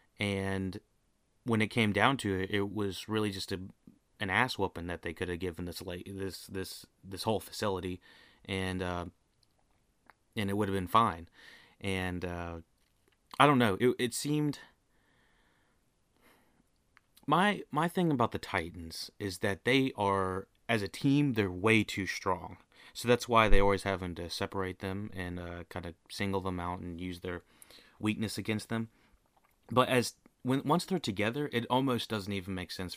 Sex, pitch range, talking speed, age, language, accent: male, 95-115 Hz, 175 wpm, 30-49, English, American